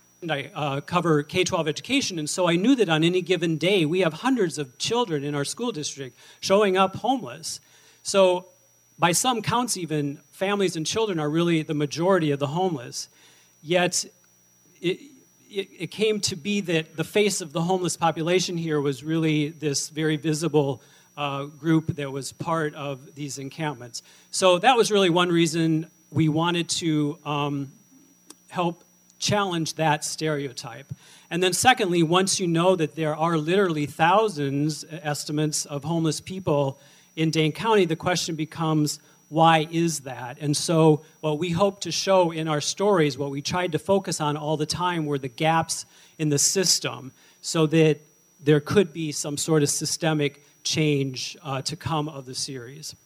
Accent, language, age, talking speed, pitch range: American, English, 40-59, 170 wpm, 145-180 Hz